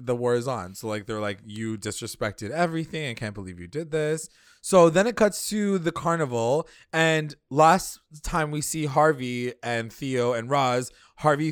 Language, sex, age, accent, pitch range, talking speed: English, male, 20-39, American, 120-160 Hz, 180 wpm